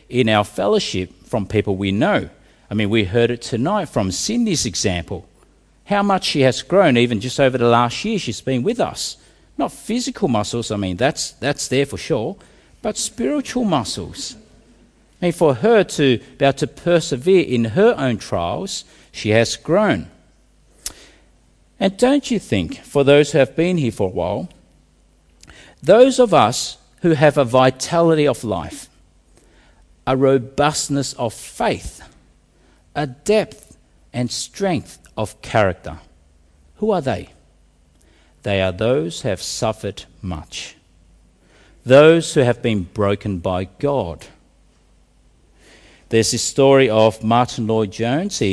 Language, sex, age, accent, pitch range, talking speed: English, male, 50-69, Australian, 100-150 Hz, 140 wpm